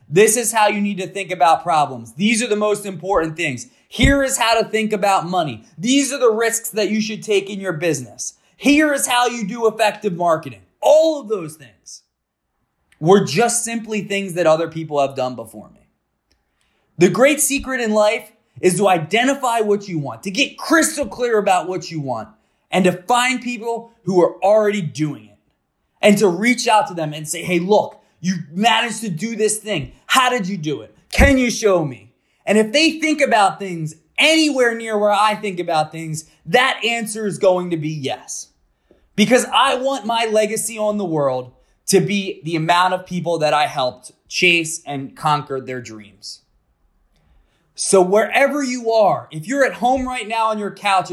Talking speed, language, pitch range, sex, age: 190 wpm, English, 160-230 Hz, male, 20-39